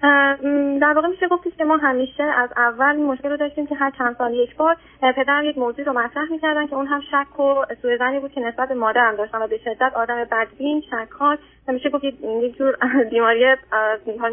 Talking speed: 195 wpm